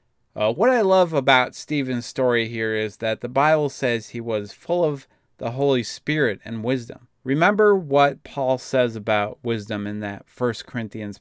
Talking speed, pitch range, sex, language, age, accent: 170 wpm, 115-145 Hz, male, English, 30-49, American